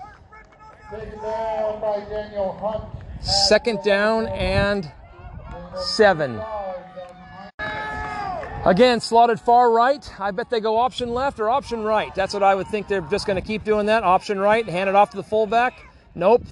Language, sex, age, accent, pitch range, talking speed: English, male, 40-59, American, 185-220 Hz, 140 wpm